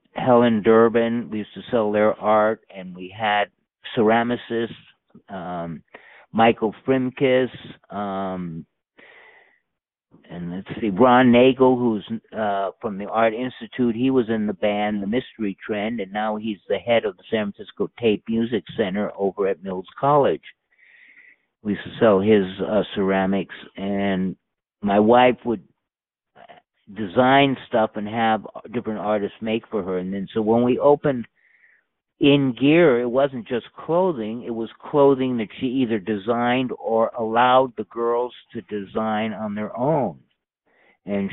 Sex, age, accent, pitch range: male, 50-69, American, 105-125 Hz